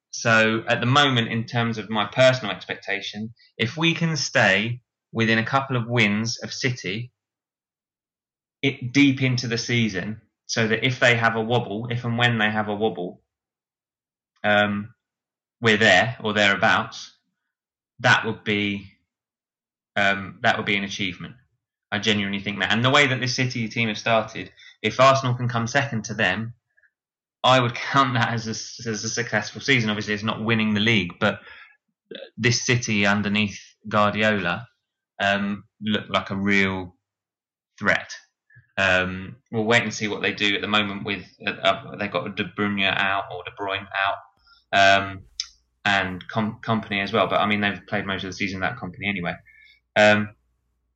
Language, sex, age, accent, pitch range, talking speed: English, male, 20-39, British, 100-120 Hz, 165 wpm